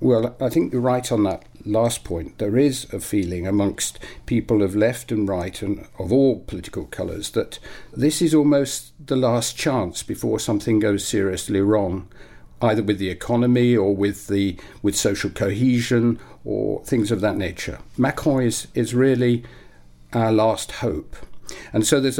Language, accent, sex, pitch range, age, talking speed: English, British, male, 100-120 Hz, 50-69, 165 wpm